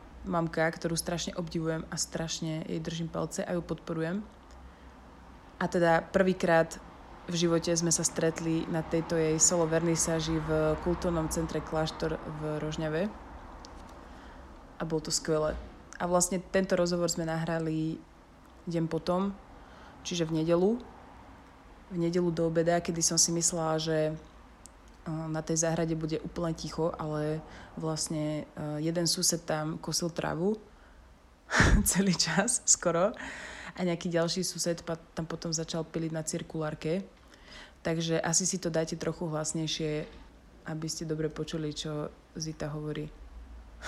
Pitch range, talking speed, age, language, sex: 155-170 Hz, 130 wpm, 20-39, Slovak, female